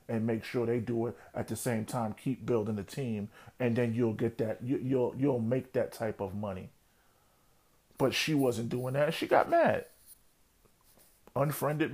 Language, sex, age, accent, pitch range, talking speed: English, male, 40-59, American, 115-140 Hz, 180 wpm